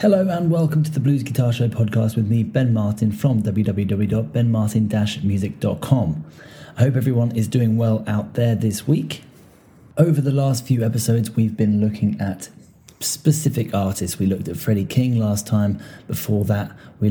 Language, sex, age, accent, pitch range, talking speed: English, male, 30-49, British, 100-120 Hz, 160 wpm